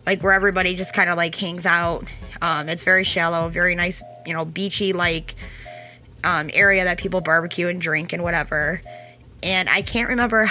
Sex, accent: female, American